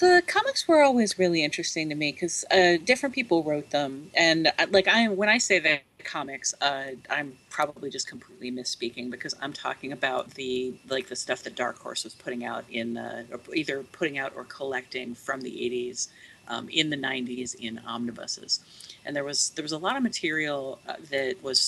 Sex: female